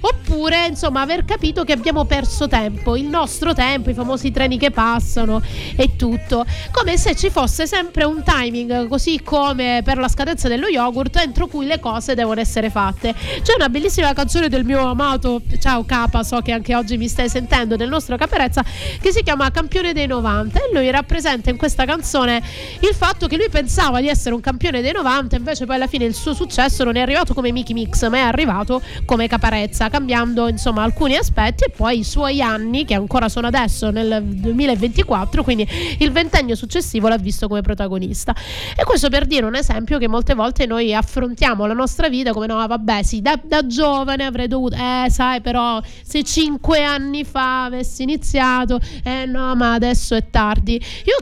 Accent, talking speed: native, 190 wpm